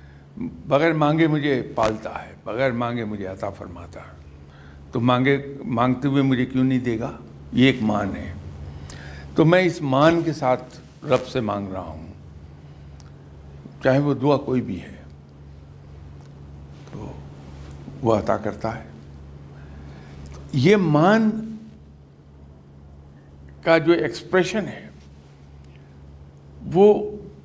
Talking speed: 115 wpm